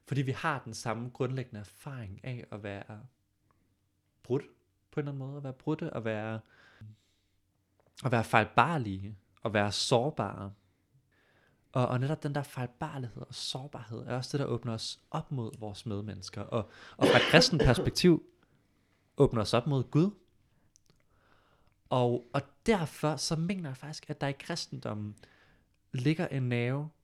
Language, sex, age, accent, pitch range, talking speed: Danish, male, 20-39, native, 105-140 Hz, 160 wpm